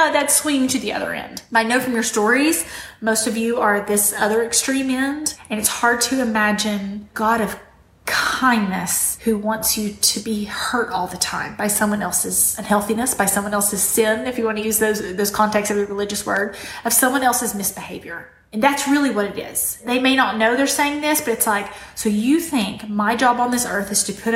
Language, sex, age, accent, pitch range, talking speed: English, female, 20-39, American, 210-275 Hz, 215 wpm